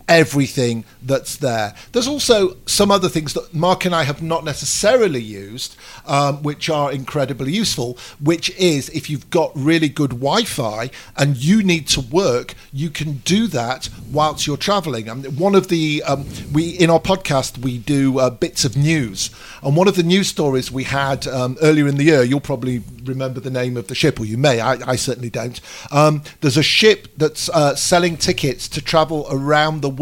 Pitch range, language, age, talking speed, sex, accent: 130-160 Hz, Hebrew, 50-69, 200 wpm, male, British